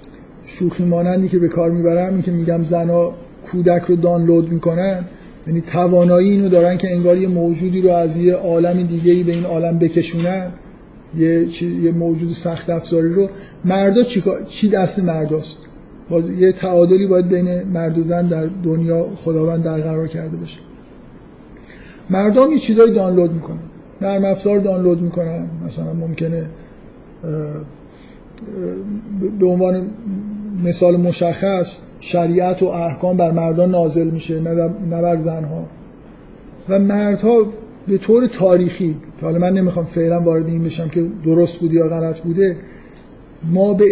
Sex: male